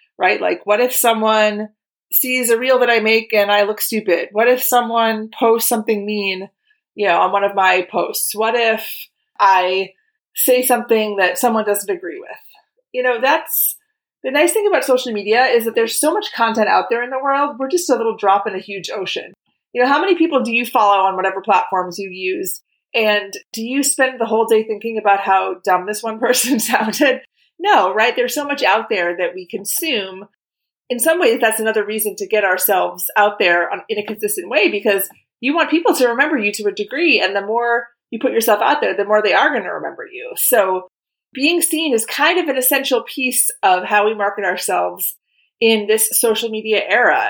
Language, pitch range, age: English, 210-290 Hz, 30-49